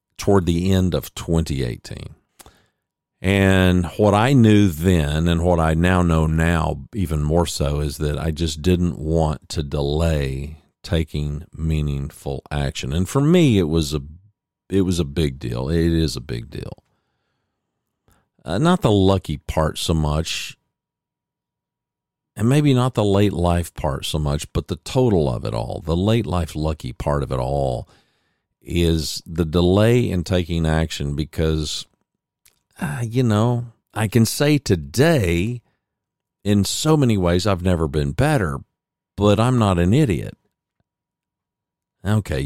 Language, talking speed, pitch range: English, 145 wpm, 75-100 Hz